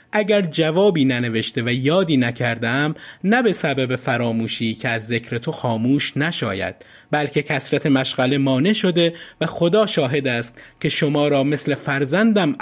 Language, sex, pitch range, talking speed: Persian, male, 120-175 Hz, 140 wpm